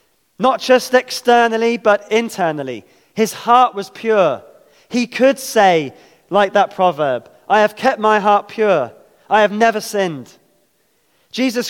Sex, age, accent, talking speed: male, 20-39, British, 135 wpm